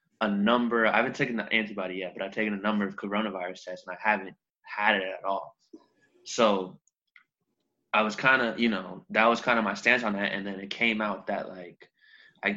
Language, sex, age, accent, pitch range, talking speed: English, male, 20-39, American, 95-110 Hz, 220 wpm